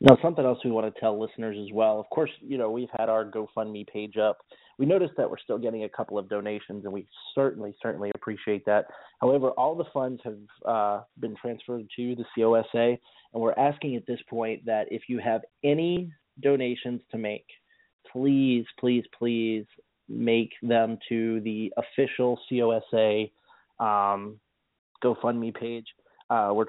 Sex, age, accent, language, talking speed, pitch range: male, 30-49, American, English, 170 wpm, 105-120 Hz